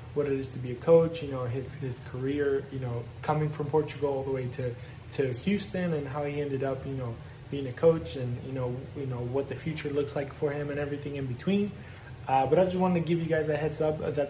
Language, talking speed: English, 260 wpm